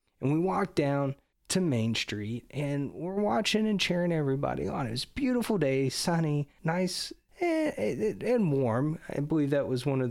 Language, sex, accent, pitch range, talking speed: English, male, American, 120-175 Hz, 170 wpm